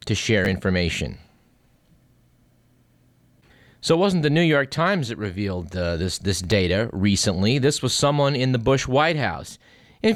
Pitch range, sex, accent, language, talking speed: 95-135 Hz, male, American, English, 155 wpm